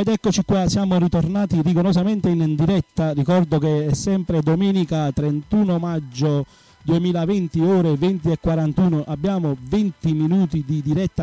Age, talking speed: 30-49, 135 wpm